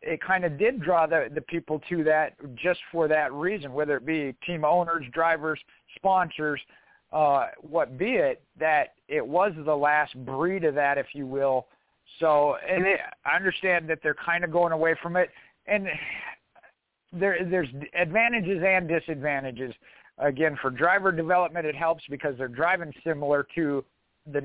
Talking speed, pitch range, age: 165 wpm, 140-170 Hz, 50-69